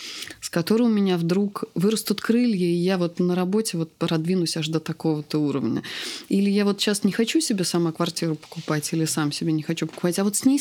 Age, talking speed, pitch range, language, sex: 20-39, 215 wpm, 150-185 Hz, Russian, female